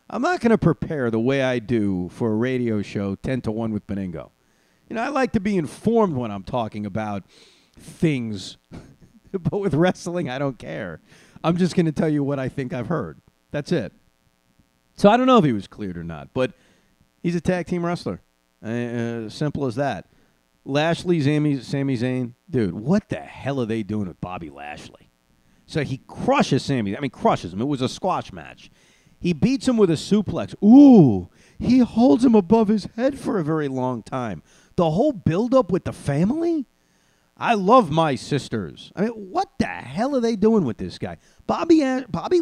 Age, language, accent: 40-59, English, American